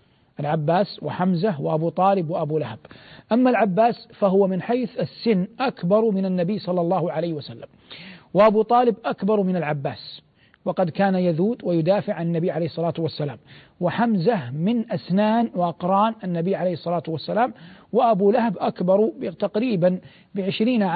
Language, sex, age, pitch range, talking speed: Arabic, male, 50-69, 175-210 Hz, 130 wpm